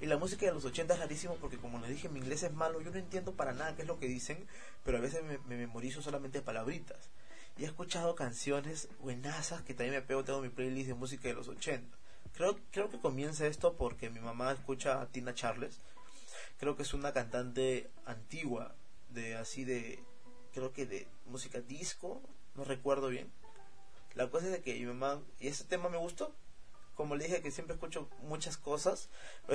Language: Spanish